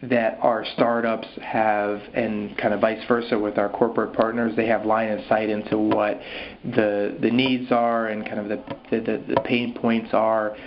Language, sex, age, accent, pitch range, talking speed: English, male, 30-49, American, 105-120 Hz, 185 wpm